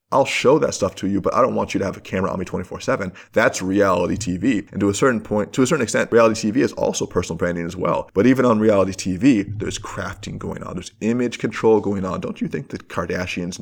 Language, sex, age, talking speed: English, male, 20-39, 250 wpm